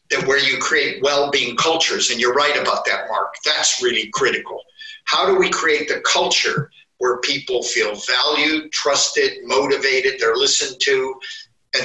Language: English